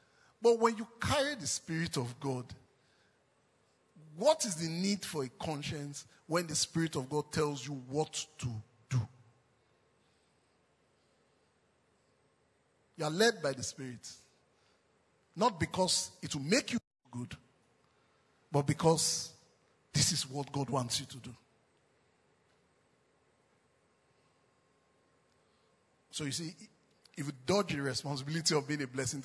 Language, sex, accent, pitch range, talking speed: English, male, Nigerian, 135-165 Hz, 125 wpm